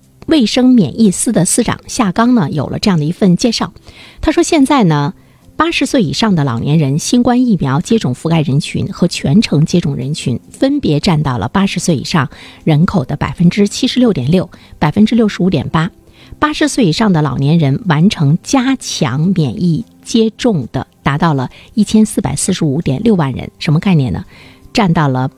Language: Chinese